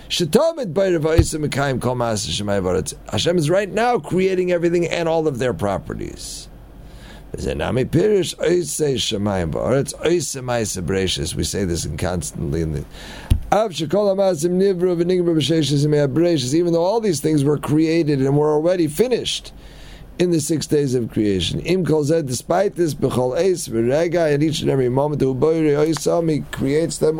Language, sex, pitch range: English, male, 125-175 Hz